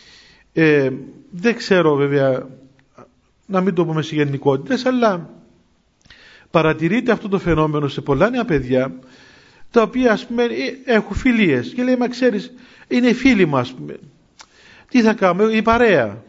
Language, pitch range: Greek, 150-230 Hz